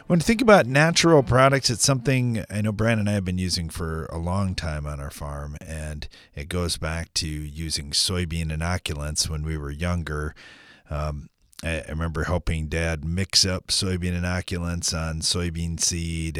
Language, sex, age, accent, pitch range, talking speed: English, male, 40-59, American, 80-120 Hz, 175 wpm